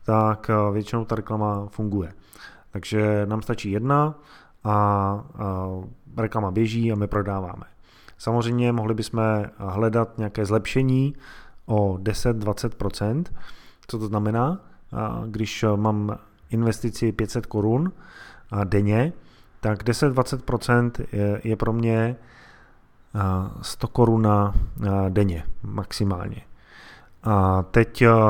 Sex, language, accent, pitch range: male, Czech, native, 100-115 Hz